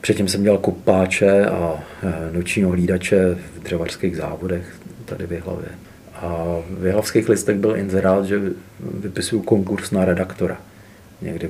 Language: Czech